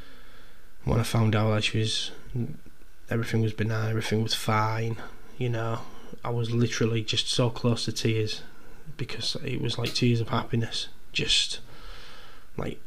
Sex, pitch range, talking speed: male, 110-120 Hz, 150 wpm